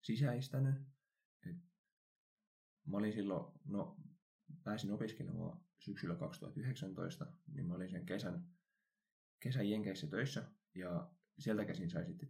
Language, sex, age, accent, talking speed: Finnish, male, 20-39, native, 105 wpm